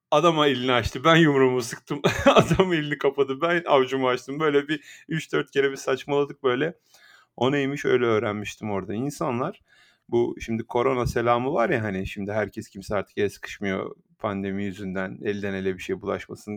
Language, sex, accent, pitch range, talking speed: Turkish, male, native, 105-175 Hz, 165 wpm